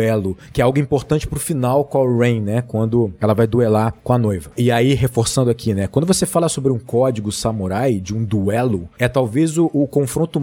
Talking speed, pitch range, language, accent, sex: 220 wpm, 115-150 Hz, Portuguese, Brazilian, male